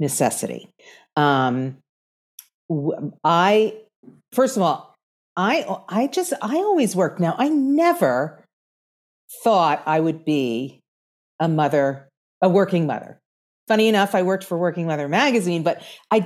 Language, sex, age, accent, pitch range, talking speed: English, female, 40-59, American, 165-225 Hz, 125 wpm